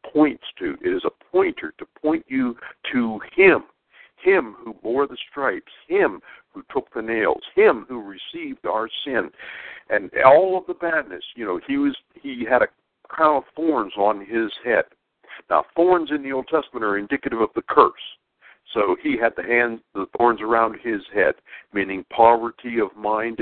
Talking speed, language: 175 wpm, English